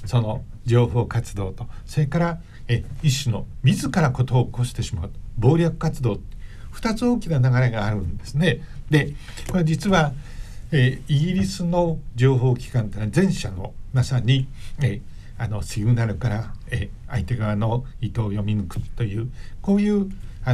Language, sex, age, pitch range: Japanese, male, 60-79, 110-150 Hz